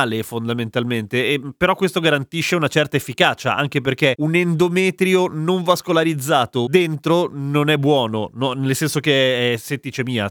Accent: native